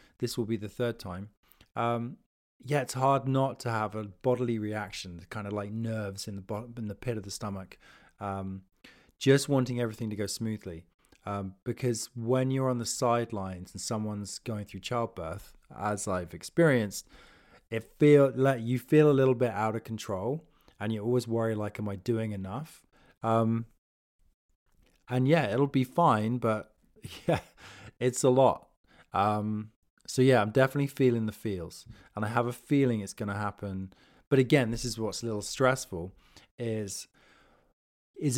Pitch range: 100-125 Hz